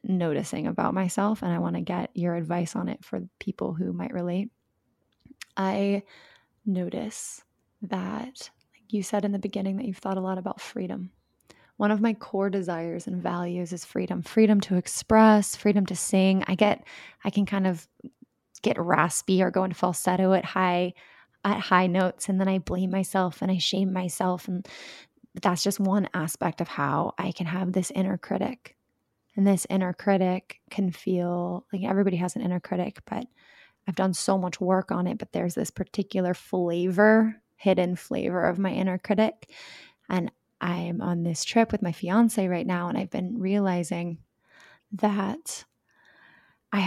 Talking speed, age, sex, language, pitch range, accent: 170 wpm, 20-39, female, English, 180-205 Hz, American